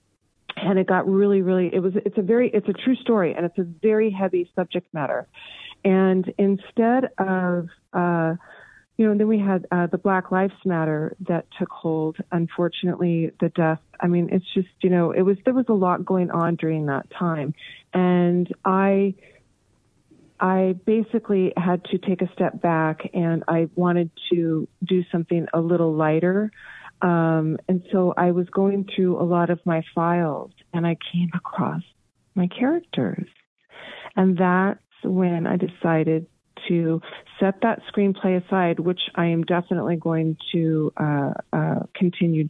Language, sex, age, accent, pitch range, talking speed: English, female, 40-59, American, 165-190 Hz, 160 wpm